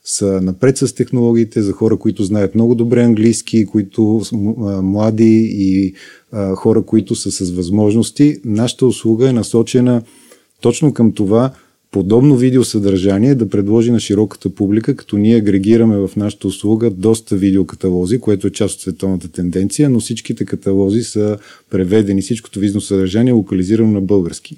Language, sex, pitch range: Bulgarian, male, 100-120 Hz